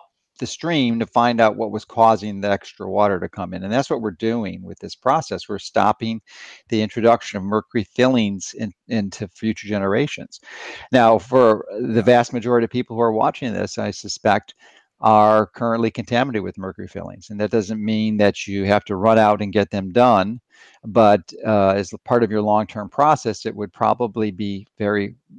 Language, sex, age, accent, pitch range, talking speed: English, male, 50-69, American, 100-115 Hz, 180 wpm